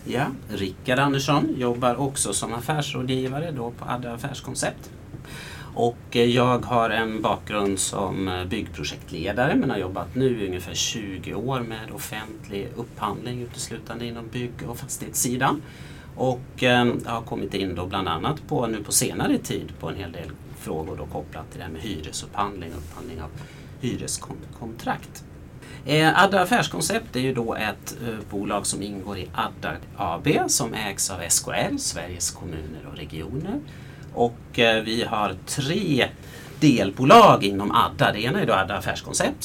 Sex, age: male, 30-49